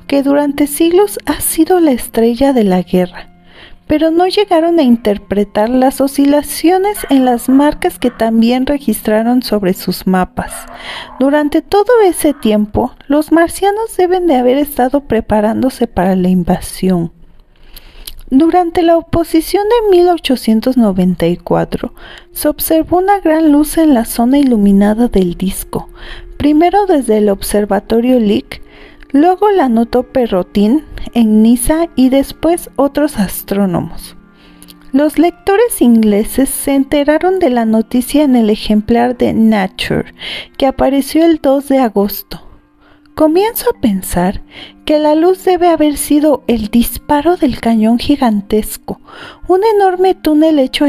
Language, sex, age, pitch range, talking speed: Spanish, female, 40-59, 215-320 Hz, 125 wpm